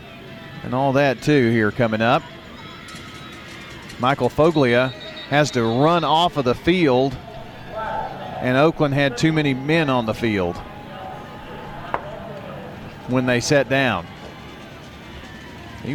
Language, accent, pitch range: English, American, 120-155 Hz